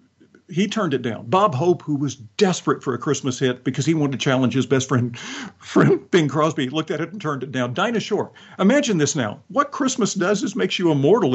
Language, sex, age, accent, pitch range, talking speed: English, male, 50-69, American, 130-190 Hz, 225 wpm